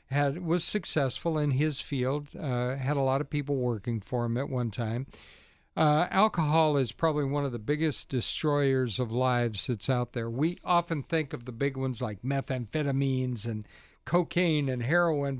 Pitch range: 130-160 Hz